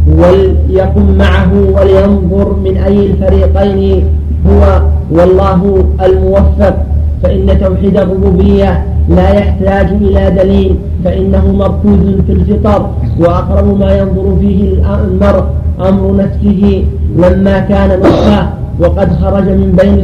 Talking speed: 100 wpm